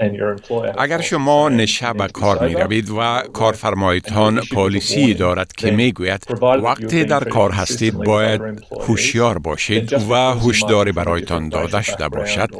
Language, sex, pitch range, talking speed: Persian, male, 95-125 Hz, 125 wpm